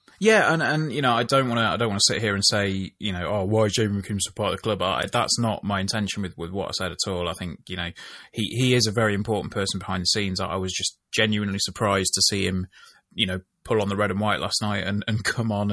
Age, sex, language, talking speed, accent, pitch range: 20-39, male, English, 290 wpm, British, 100-130 Hz